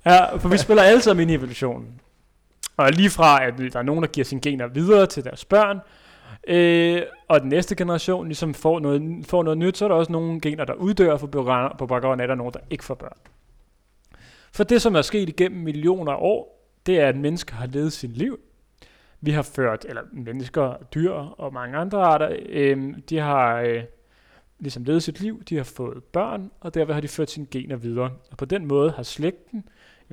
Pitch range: 130-180 Hz